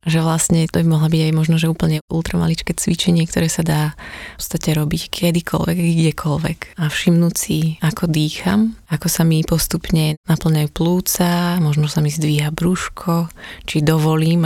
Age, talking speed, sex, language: 20-39, 160 wpm, female, Slovak